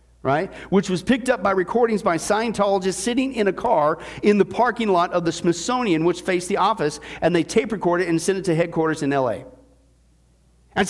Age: 50-69